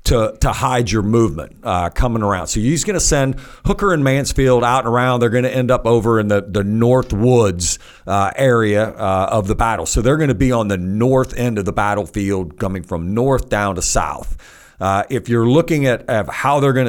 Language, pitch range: English, 100-130 Hz